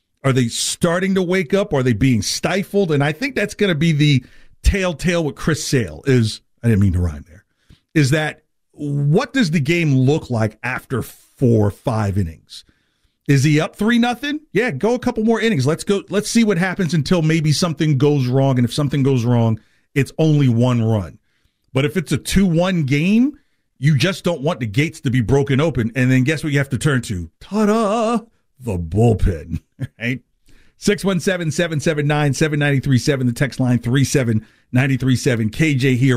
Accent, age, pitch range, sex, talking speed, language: American, 40-59, 130-185 Hz, male, 180 wpm, English